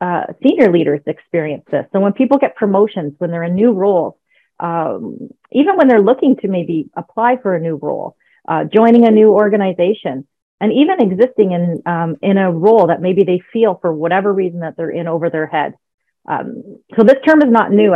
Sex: female